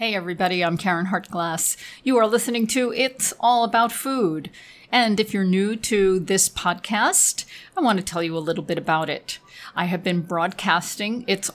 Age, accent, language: 40-59, American, English